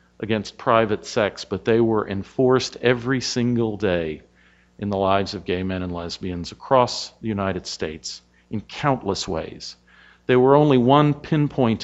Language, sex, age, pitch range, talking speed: English, male, 50-69, 85-115 Hz, 150 wpm